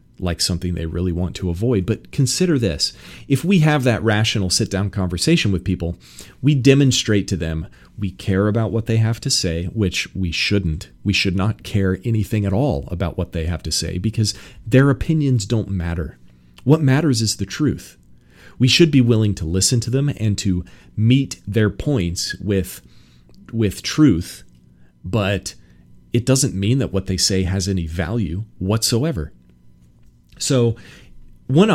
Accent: American